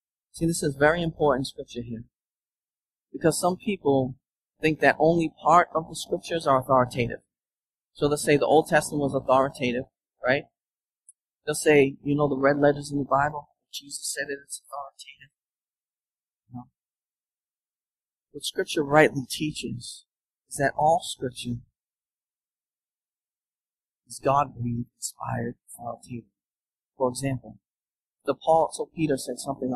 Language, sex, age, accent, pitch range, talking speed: English, male, 50-69, American, 125-150 Hz, 130 wpm